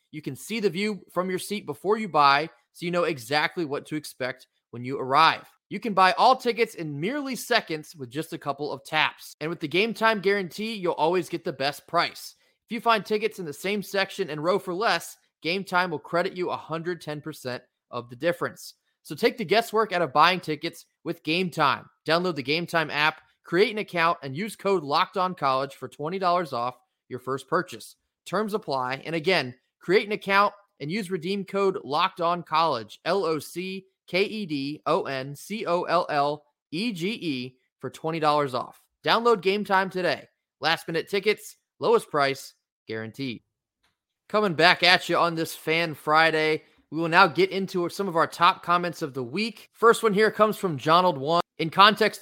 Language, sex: English, male